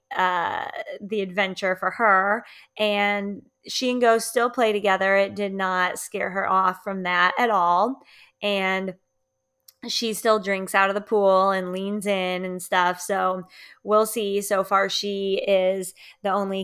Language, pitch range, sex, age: English, 185-215 Hz, female, 20-39